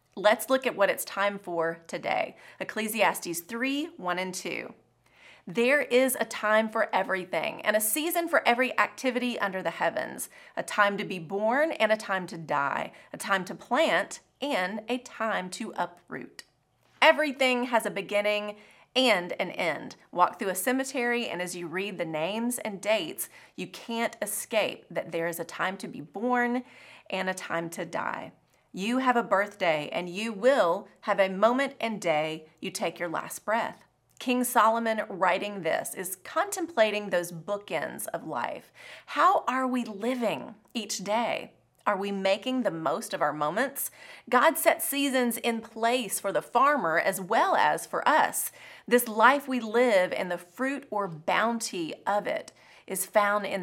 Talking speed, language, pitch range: 170 wpm, English, 190-250 Hz